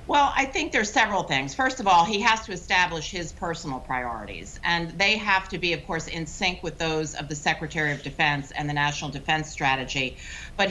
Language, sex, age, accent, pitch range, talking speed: English, female, 50-69, American, 150-180 Hz, 215 wpm